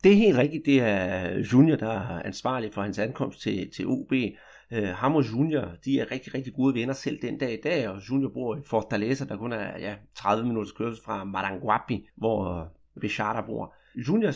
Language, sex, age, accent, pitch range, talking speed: Danish, male, 30-49, native, 115-155 Hz, 195 wpm